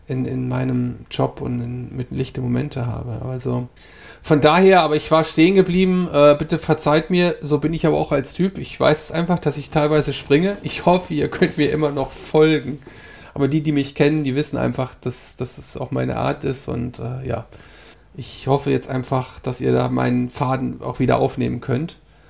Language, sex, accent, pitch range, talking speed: German, male, German, 125-150 Hz, 200 wpm